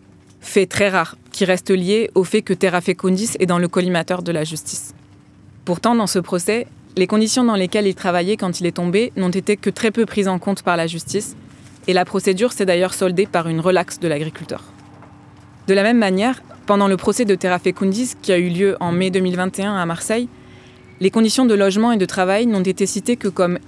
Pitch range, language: 175-205 Hz, French